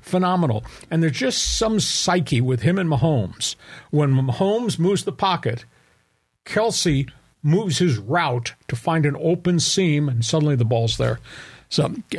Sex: male